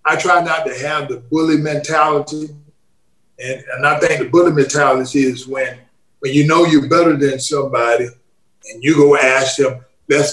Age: 50-69